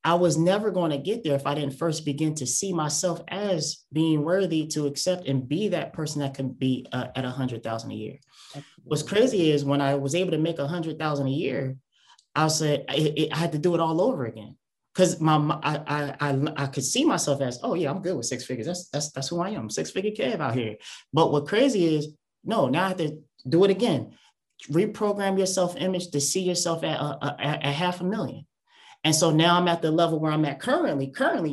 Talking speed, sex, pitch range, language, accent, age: 230 wpm, male, 135-170 Hz, English, American, 20-39